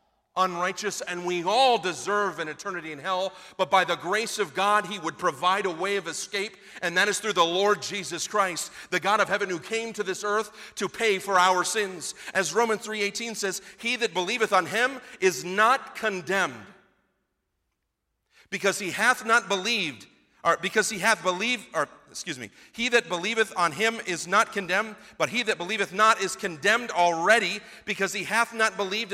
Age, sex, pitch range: 40-59, male, 190-230 Hz